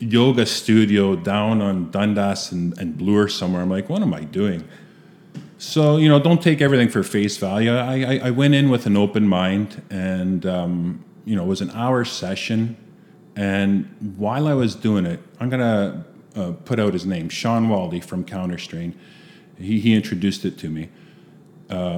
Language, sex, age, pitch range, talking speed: English, male, 30-49, 100-135 Hz, 180 wpm